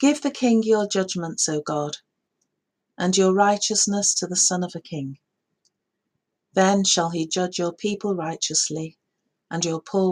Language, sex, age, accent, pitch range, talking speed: English, female, 40-59, British, 160-195 Hz, 155 wpm